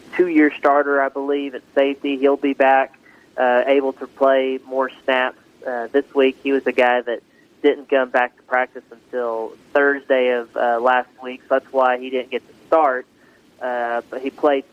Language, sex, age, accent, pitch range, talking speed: English, male, 20-39, American, 130-140 Hz, 185 wpm